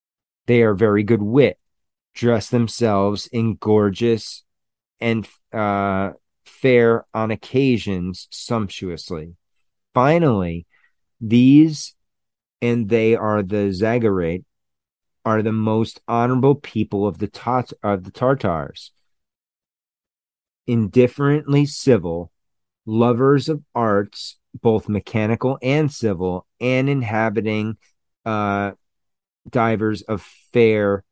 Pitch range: 100-120 Hz